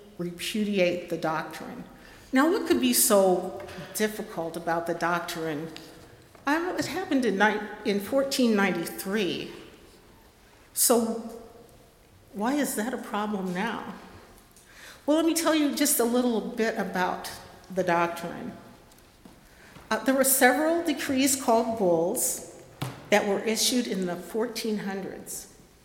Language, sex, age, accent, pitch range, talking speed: English, female, 50-69, American, 185-235 Hz, 110 wpm